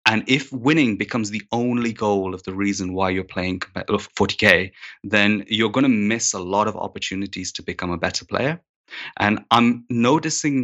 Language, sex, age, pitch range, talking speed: English, male, 20-39, 95-115 Hz, 175 wpm